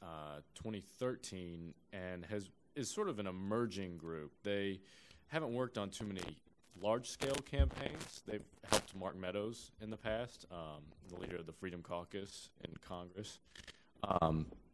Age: 30-49